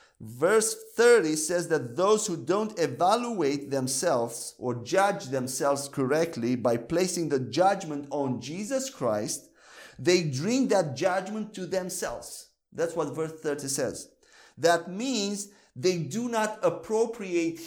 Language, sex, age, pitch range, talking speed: English, male, 50-69, 165-220 Hz, 125 wpm